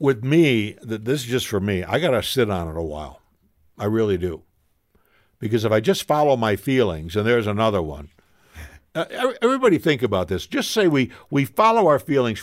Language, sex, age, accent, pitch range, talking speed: English, male, 60-79, American, 100-170 Hz, 195 wpm